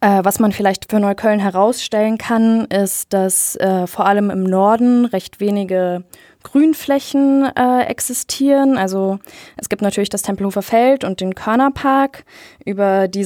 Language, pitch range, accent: German, 180-220 Hz, German